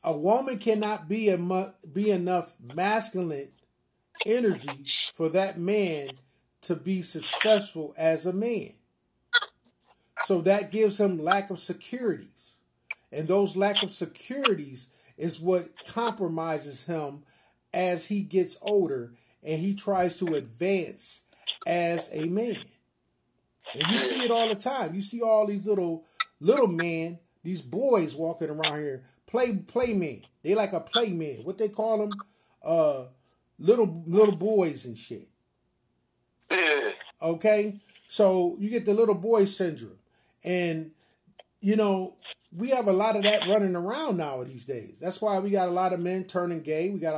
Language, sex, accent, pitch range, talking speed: English, male, American, 160-205 Hz, 150 wpm